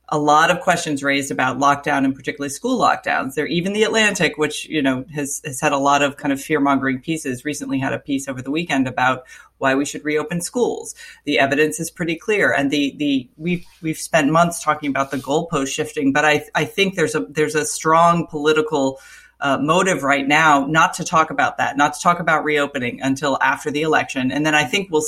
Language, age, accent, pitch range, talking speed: English, 30-49, American, 145-175 Hz, 220 wpm